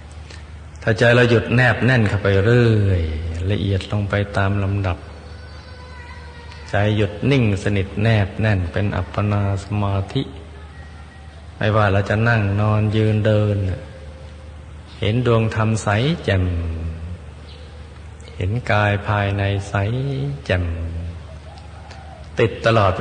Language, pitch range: Thai, 80-100 Hz